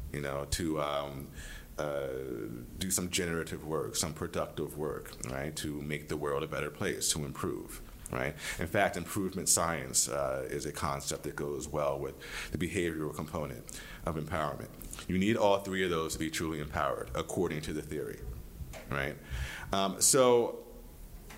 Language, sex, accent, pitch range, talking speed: English, male, American, 75-95 Hz, 160 wpm